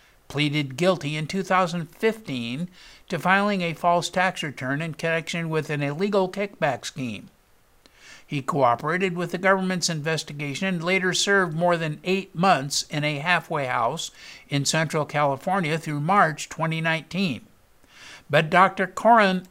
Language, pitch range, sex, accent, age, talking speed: English, 145-190 Hz, male, American, 60-79, 125 wpm